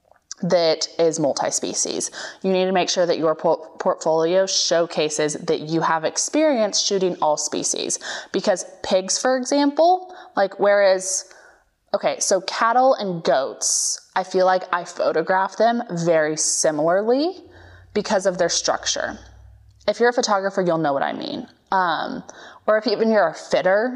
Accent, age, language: American, 20-39, English